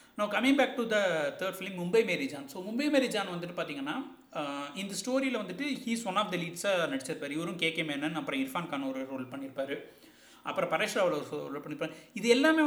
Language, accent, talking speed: Tamil, native, 205 wpm